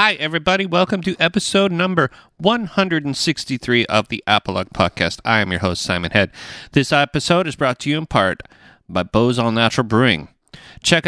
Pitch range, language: 110-155 Hz, English